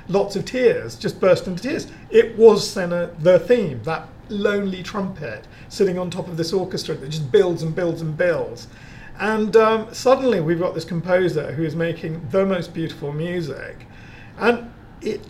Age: 40-59